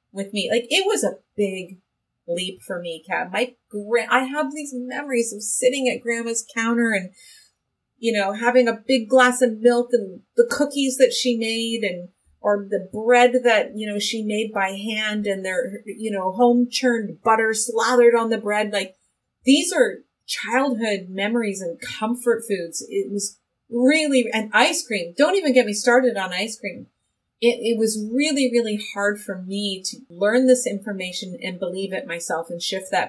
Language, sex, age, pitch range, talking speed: English, female, 30-49, 190-245 Hz, 180 wpm